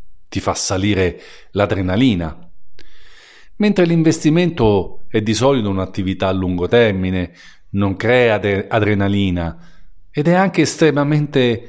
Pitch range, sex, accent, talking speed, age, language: 95-145 Hz, male, native, 105 wpm, 50-69, Italian